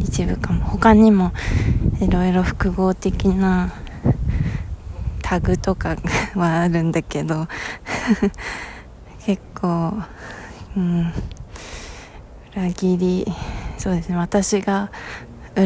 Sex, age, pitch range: female, 20-39, 160-200 Hz